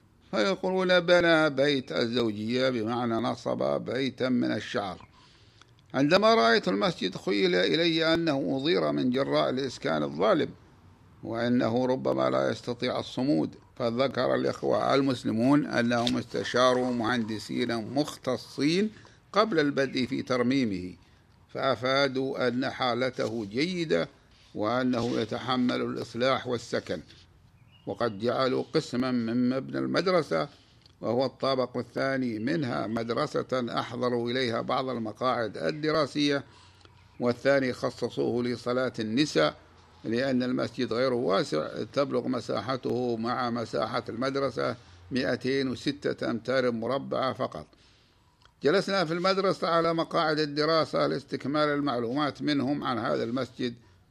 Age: 50-69